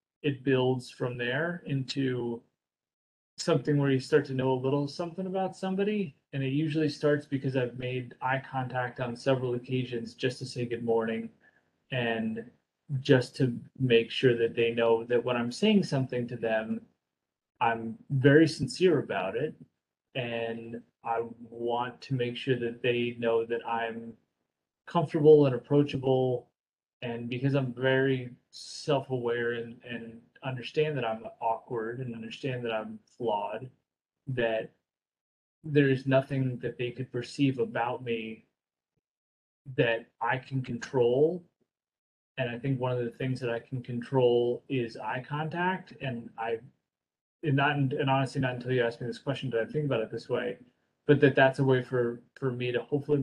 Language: English